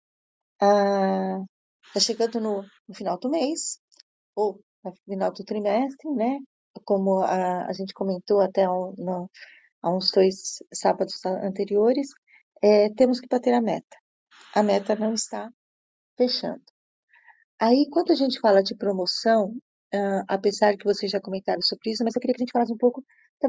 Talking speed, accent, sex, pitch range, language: 155 wpm, Brazilian, female, 200-245 Hz, Portuguese